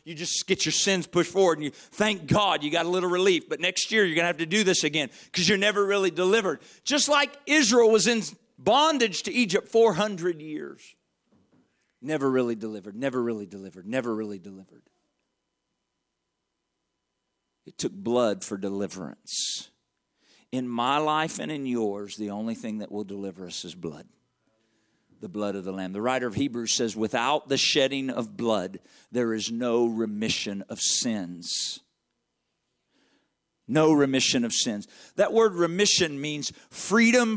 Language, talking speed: English, 160 wpm